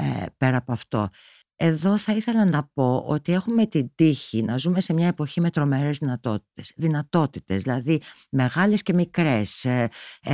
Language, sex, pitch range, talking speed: Greek, female, 120-175 Hz, 175 wpm